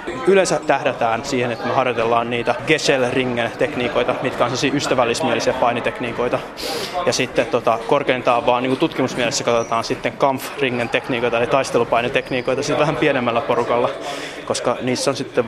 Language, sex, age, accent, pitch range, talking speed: Finnish, male, 20-39, native, 125-155 Hz, 130 wpm